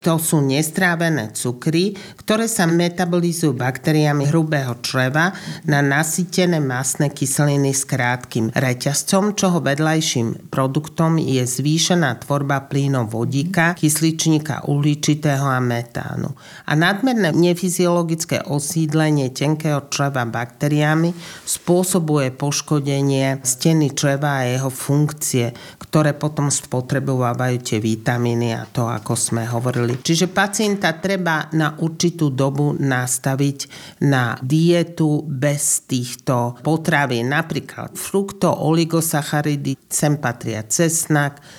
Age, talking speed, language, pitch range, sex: 40-59, 100 wpm, Slovak, 135-160 Hz, male